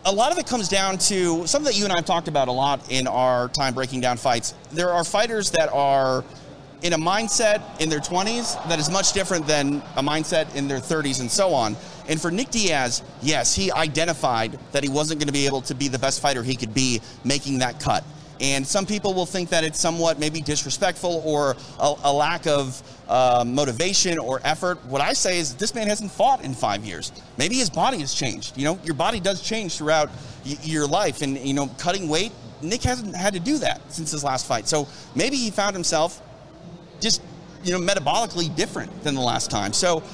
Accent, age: American, 30-49